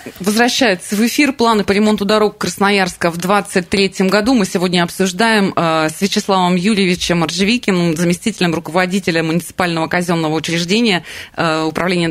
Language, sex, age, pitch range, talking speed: Russian, female, 20-39, 155-205 Hz, 120 wpm